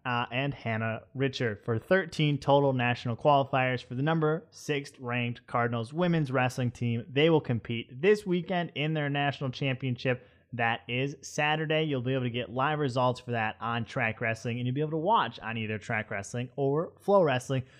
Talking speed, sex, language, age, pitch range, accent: 185 wpm, male, English, 20-39, 120-155 Hz, American